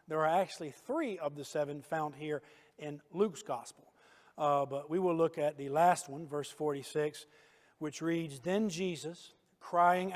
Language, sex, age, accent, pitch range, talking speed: English, male, 50-69, American, 145-175 Hz, 165 wpm